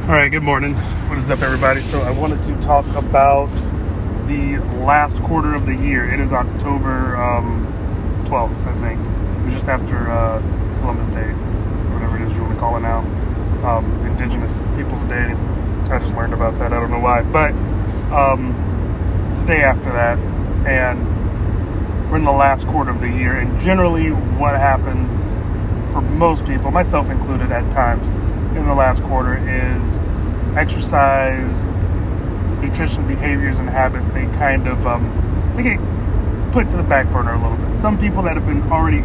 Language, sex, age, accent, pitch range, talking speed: English, male, 30-49, American, 90-105 Hz, 170 wpm